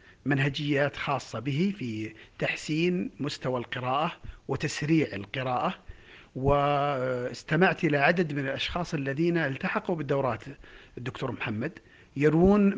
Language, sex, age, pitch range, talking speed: Arabic, male, 50-69, 125-170 Hz, 95 wpm